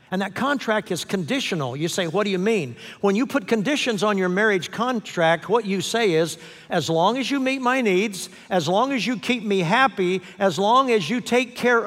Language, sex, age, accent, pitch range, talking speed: English, male, 60-79, American, 160-205 Hz, 215 wpm